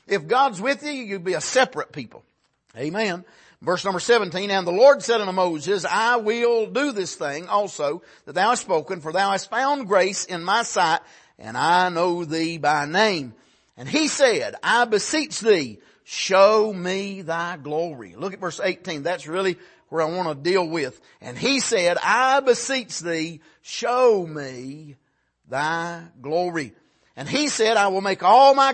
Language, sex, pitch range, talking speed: English, male, 175-250 Hz, 175 wpm